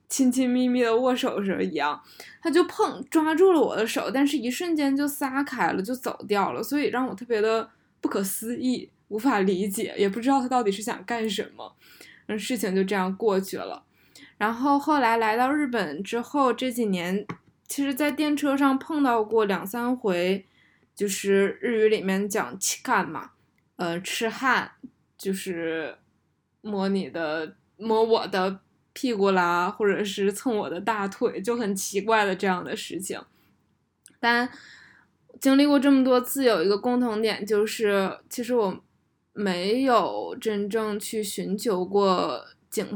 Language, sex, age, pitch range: Chinese, female, 10-29, 200-255 Hz